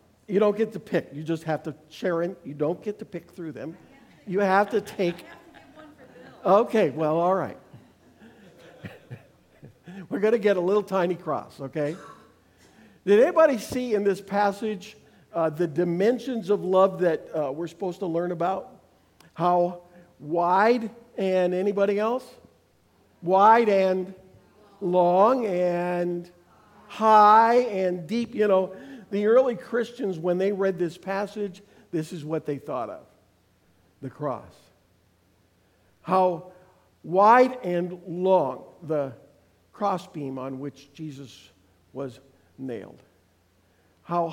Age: 50-69